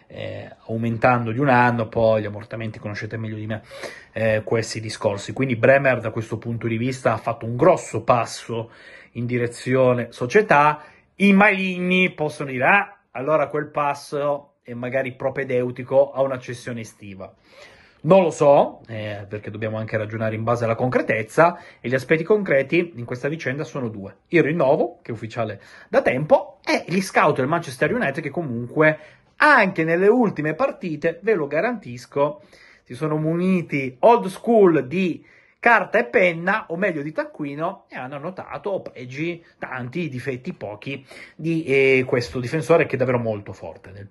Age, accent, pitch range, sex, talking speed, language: 30-49, native, 115-160 Hz, male, 160 wpm, Italian